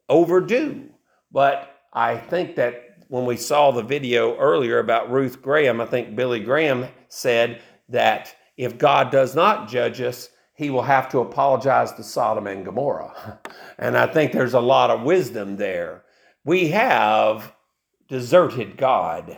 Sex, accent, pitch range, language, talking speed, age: male, American, 140-225 Hz, English, 150 wpm, 50-69